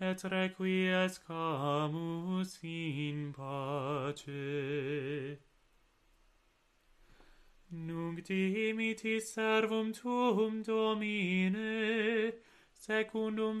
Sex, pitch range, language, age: male, 190-220 Hz, English, 30-49